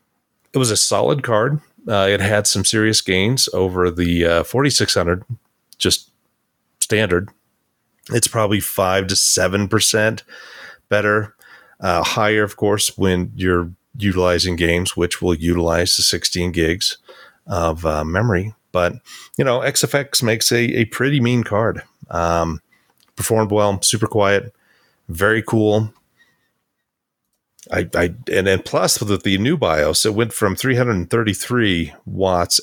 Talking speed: 130 wpm